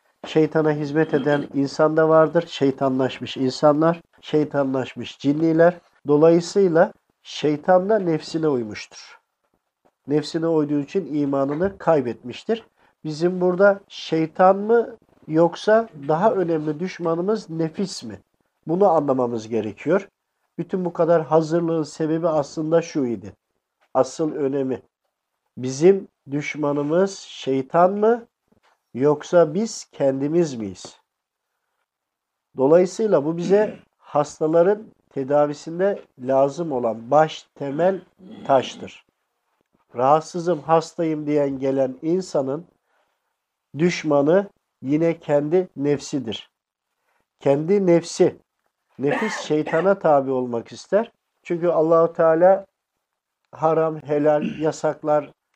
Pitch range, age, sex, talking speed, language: 145-175 Hz, 50-69, male, 90 wpm, English